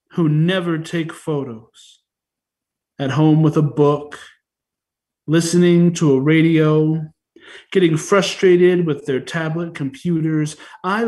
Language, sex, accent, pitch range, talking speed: English, male, American, 155-185 Hz, 110 wpm